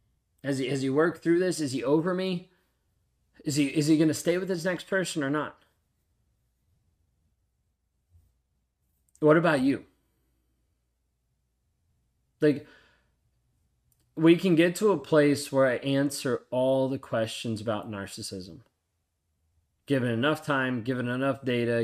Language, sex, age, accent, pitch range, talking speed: English, male, 20-39, American, 105-140 Hz, 130 wpm